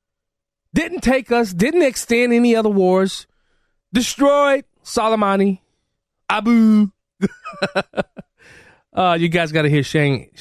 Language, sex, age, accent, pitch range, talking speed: English, male, 20-39, American, 125-180 Hz, 105 wpm